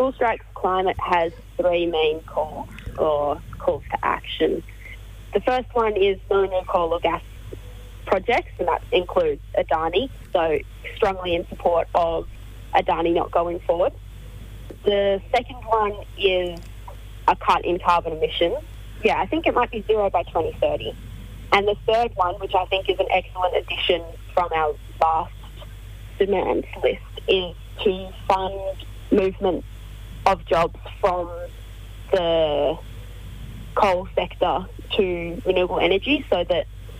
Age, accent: 20-39, Australian